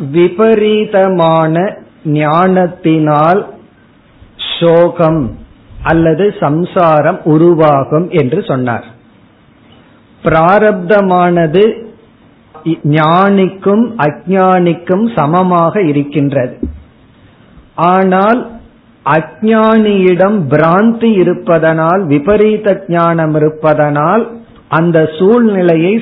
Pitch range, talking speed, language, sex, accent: 155-210 Hz, 50 wpm, Tamil, male, native